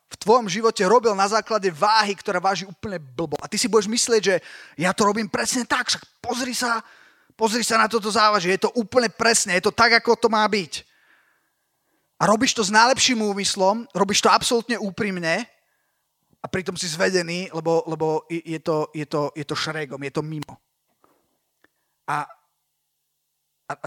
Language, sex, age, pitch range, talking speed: Slovak, male, 30-49, 150-210 Hz, 170 wpm